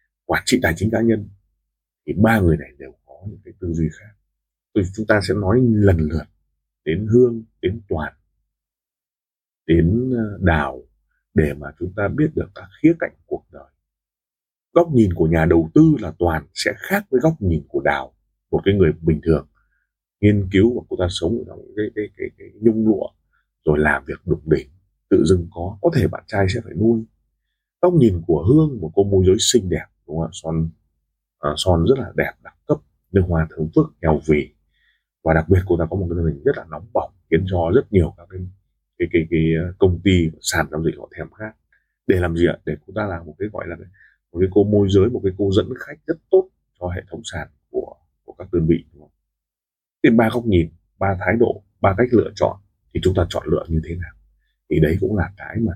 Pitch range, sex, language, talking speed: 80-105 Hz, male, Vietnamese, 220 wpm